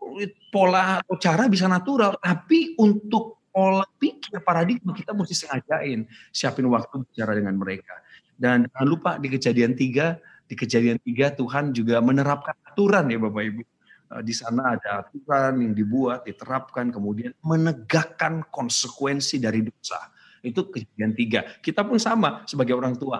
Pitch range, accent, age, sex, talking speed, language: 120-170 Hz, native, 30-49, male, 140 wpm, Indonesian